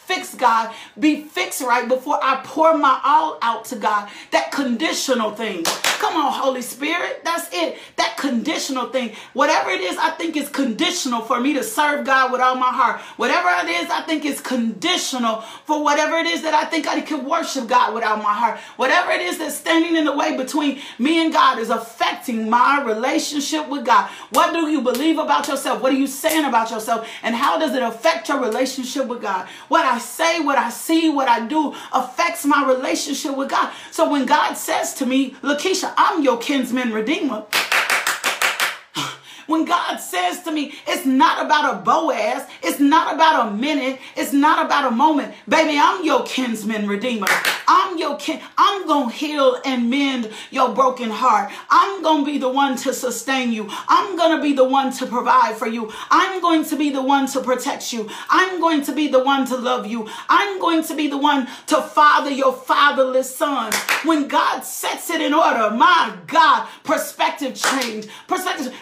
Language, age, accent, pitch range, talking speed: English, 40-59, American, 255-315 Hz, 190 wpm